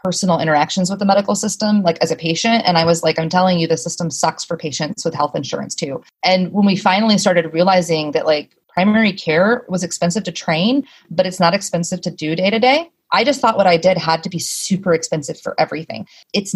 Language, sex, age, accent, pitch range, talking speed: English, female, 30-49, American, 170-210 Hz, 230 wpm